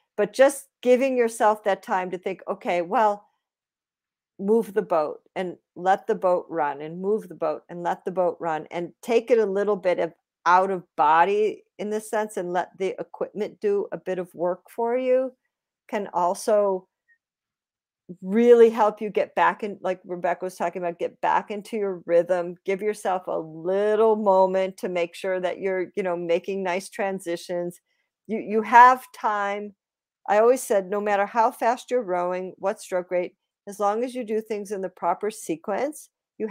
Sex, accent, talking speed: female, American, 180 wpm